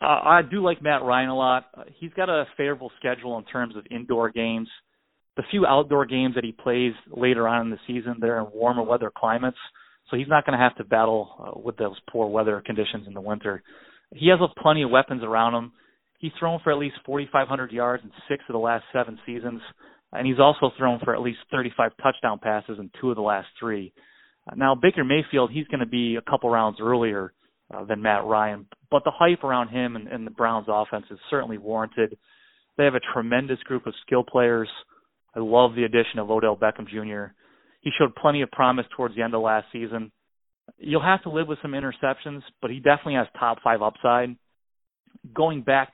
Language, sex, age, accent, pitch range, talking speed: English, male, 30-49, American, 110-135 Hz, 210 wpm